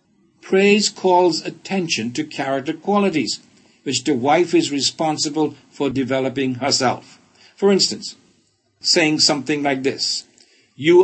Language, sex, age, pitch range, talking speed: English, male, 60-79, 145-200 Hz, 115 wpm